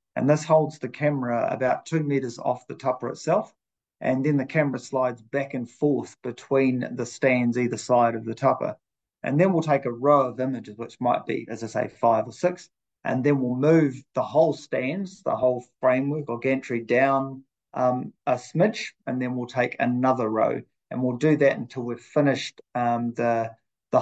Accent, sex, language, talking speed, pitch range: Australian, male, English, 190 wpm, 120-140 Hz